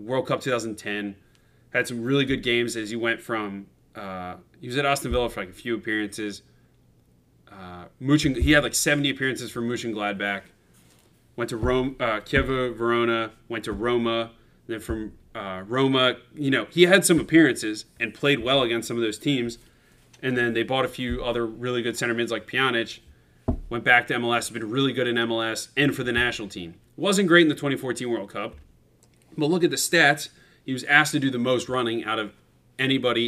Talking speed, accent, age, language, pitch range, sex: 200 wpm, American, 30-49, English, 115-135 Hz, male